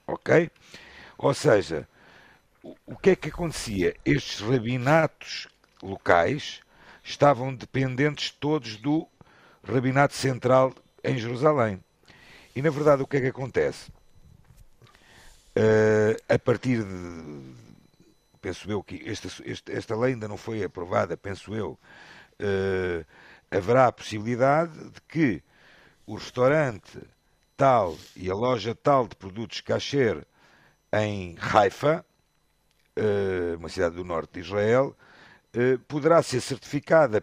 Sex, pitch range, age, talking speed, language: male, 105-140 Hz, 50-69, 115 wpm, Portuguese